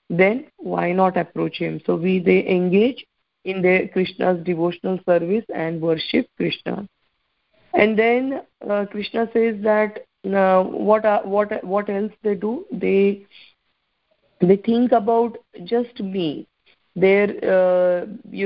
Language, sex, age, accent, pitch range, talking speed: English, female, 20-39, Indian, 175-210 Hz, 130 wpm